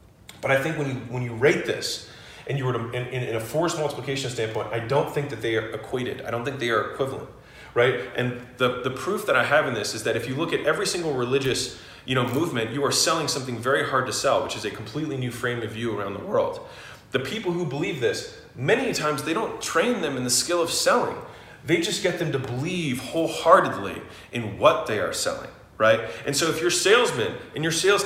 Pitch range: 120-165 Hz